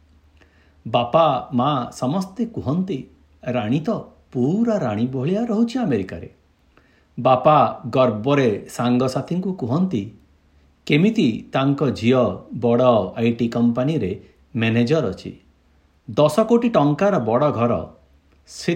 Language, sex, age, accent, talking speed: Hindi, male, 60-79, native, 85 wpm